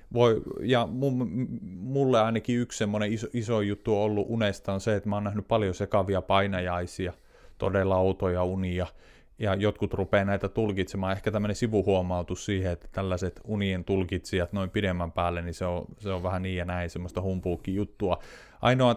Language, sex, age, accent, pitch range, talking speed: Finnish, male, 30-49, native, 95-120 Hz, 170 wpm